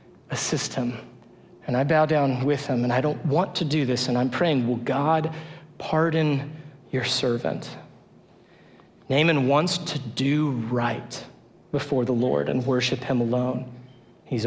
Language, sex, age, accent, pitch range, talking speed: English, male, 40-59, American, 130-175 Hz, 150 wpm